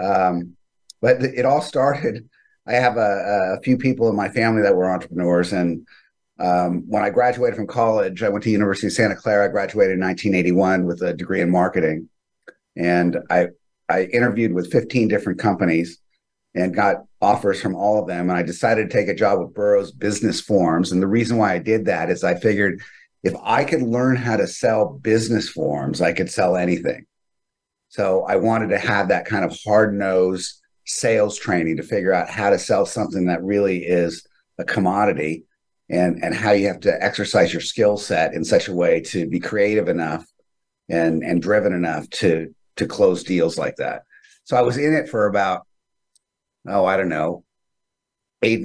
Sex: male